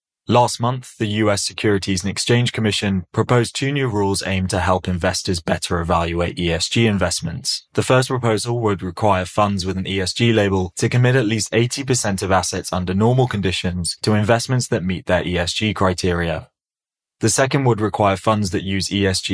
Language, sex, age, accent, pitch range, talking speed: English, male, 20-39, British, 95-115 Hz, 170 wpm